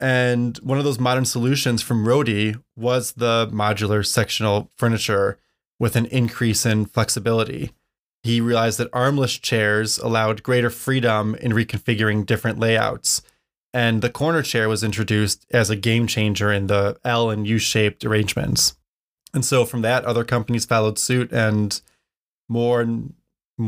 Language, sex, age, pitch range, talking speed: English, male, 20-39, 110-125 Hz, 145 wpm